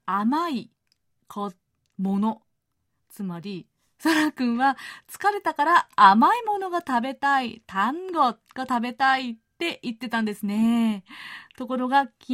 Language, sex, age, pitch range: Japanese, female, 30-49, 205-290 Hz